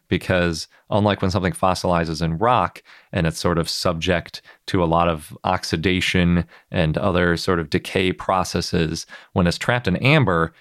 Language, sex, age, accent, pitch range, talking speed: English, male, 30-49, American, 85-105 Hz, 160 wpm